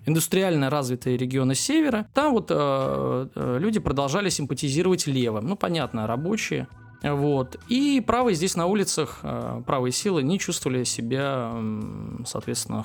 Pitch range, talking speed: 125-185 Hz, 120 wpm